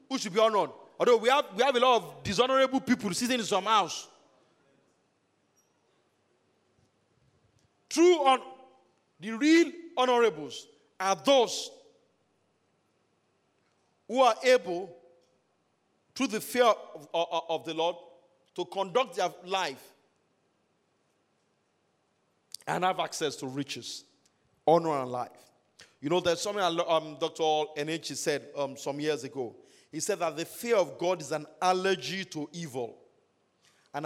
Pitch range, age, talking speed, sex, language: 165-235 Hz, 40-59, 130 wpm, male, English